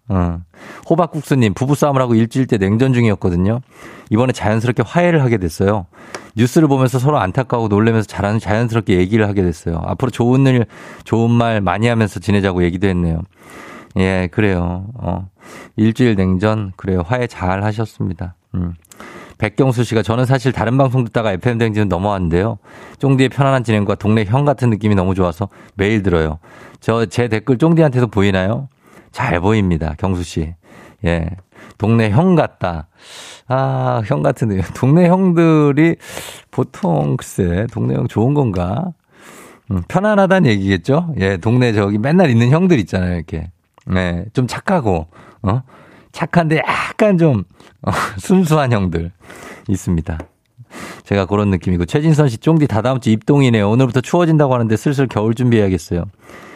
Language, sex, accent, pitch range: Korean, male, native, 95-130 Hz